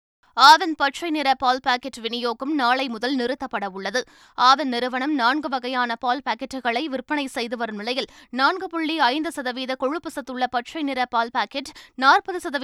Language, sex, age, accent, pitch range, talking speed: Tamil, female, 20-39, native, 235-285 Hz, 115 wpm